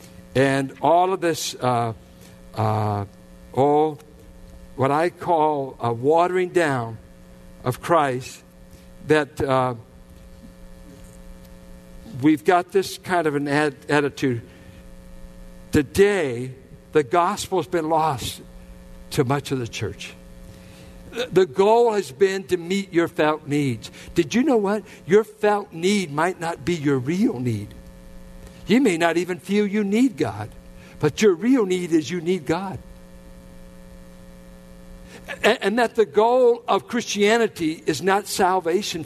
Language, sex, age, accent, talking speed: English, male, 60-79, American, 125 wpm